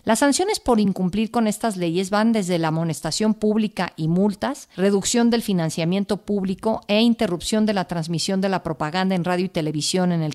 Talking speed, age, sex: 185 wpm, 50-69, female